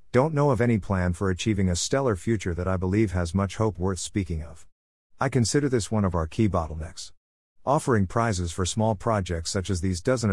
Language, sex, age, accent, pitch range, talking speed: English, male, 50-69, American, 90-115 Hz, 210 wpm